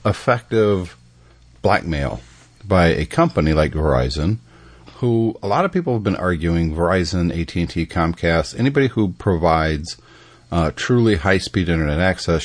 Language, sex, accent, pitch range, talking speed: English, male, American, 80-110 Hz, 140 wpm